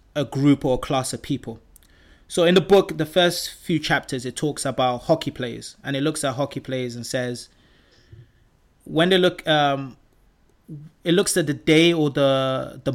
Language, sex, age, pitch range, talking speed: English, male, 20-39, 130-155 Hz, 185 wpm